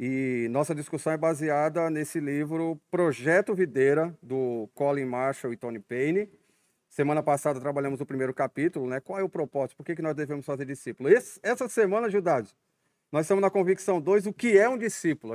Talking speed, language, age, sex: 175 wpm, Portuguese, 40-59, male